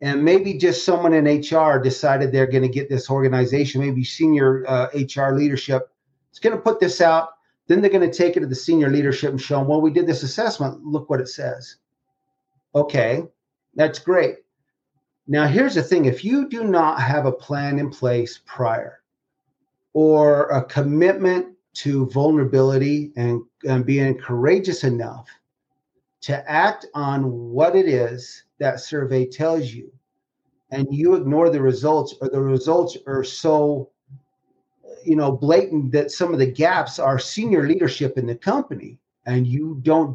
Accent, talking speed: American, 165 wpm